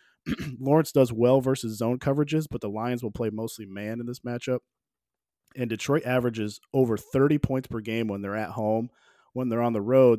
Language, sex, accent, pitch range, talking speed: English, male, American, 105-125 Hz, 195 wpm